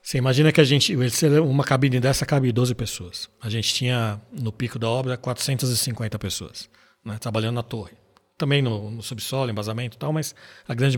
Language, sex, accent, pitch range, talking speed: Portuguese, male, Brazilian, 110-140 Hz, 185 wpm